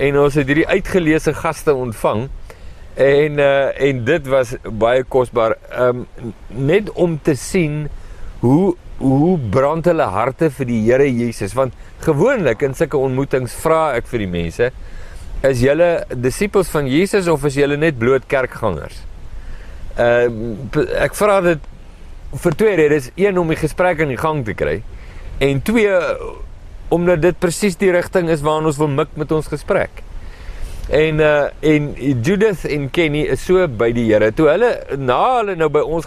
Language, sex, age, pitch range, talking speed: English, male, 50-69, 120-160 Hz, 160 wpm